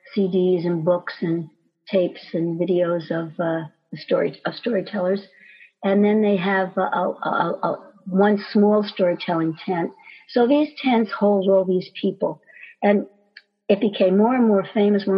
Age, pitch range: 60-79, 175-205 Hz